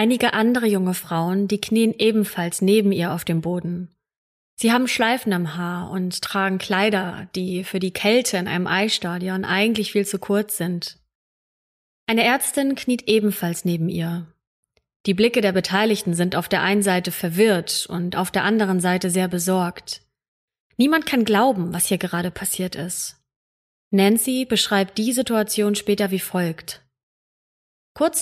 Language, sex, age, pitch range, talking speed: German, female, 30-49, 175-225 Hz, 150 wpm